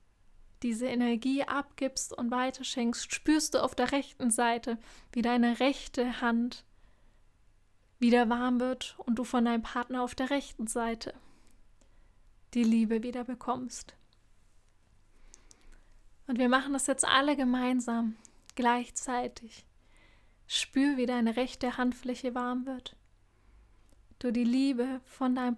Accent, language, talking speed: German, German, 120 wpm